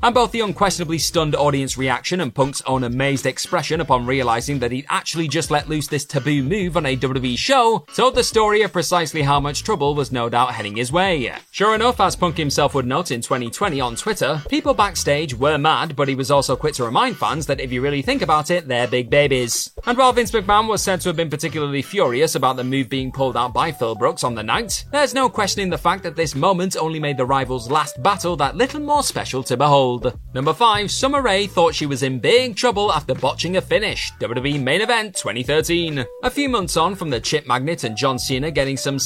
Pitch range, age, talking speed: 135-195 Hz, 30-49, 225 wpm